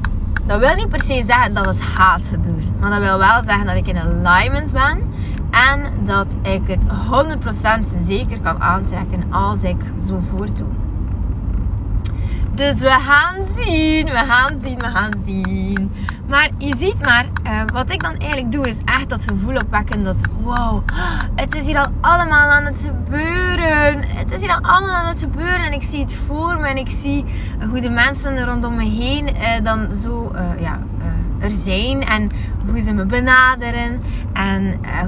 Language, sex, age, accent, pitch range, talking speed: Dutch, female, 20-39, Dutch, 95-105 Hz, 180 wpm